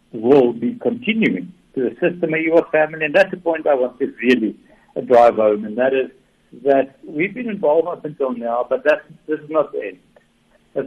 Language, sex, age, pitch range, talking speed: English, male, 60-79, 125-185 Hz, 205 wpm